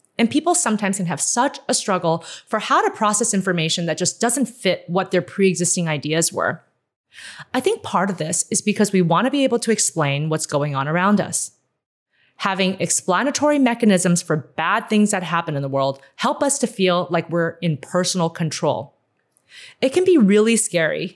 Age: 30-49